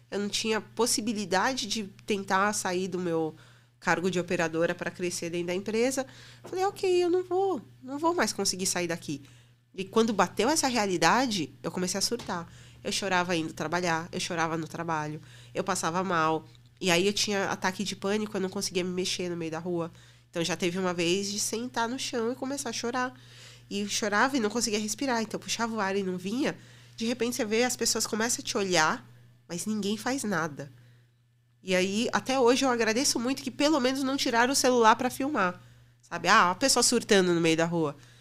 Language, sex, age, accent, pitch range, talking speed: Portuguese, female, 20-39, Brazilian, 165-225 Hz, 205 wpm